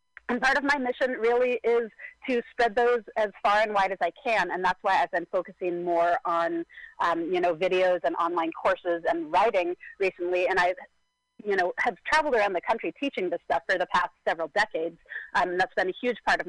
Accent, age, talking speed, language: American, 30-49, 220 wpm, English